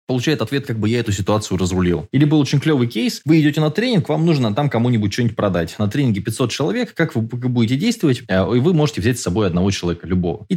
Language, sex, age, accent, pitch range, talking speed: Russian, male, 20-39, native, 95-145 Hz, 235 wpm